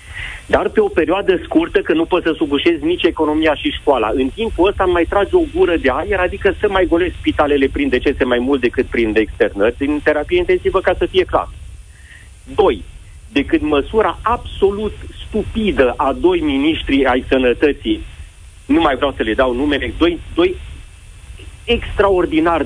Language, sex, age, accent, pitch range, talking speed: Romanian, male, 40-59, native, 145-230 Hz, 170 wpm